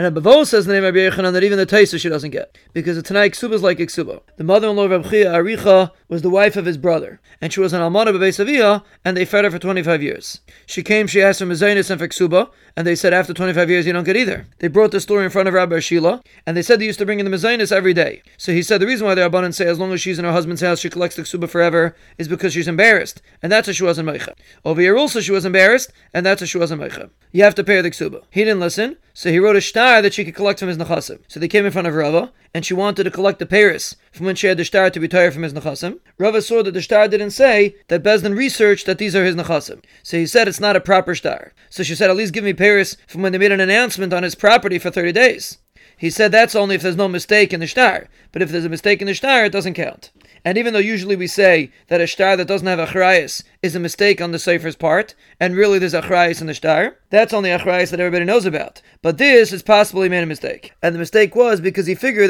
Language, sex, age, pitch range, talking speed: English, male, 30-49, 175-205 Hz, 275 wpm